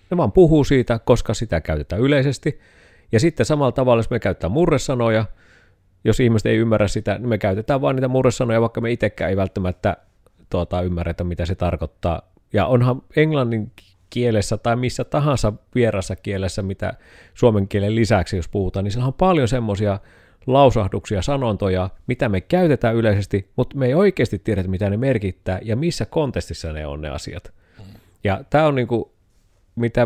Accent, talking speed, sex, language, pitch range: native, 165 wpm, male, Finnish, 95-125 Hz